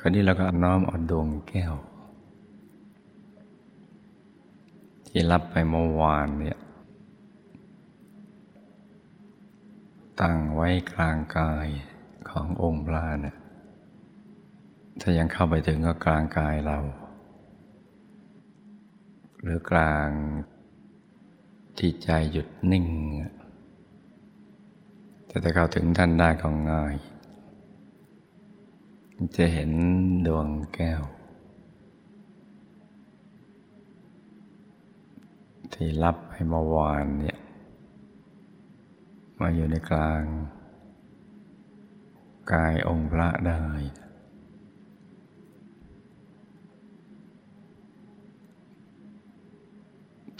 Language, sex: Thai, male